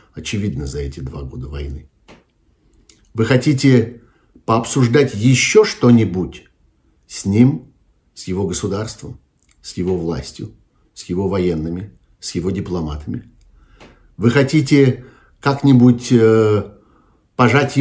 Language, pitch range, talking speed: Russian, 95-130 Hz, 100 wpm